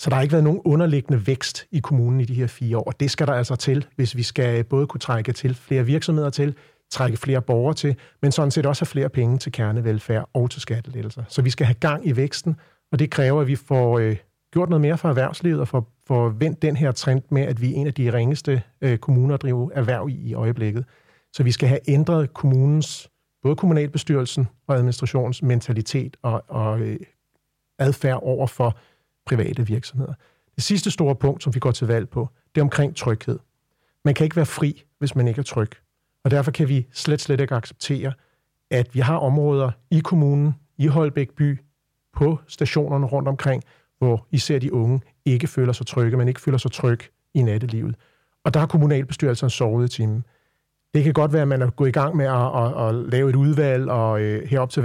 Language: Danish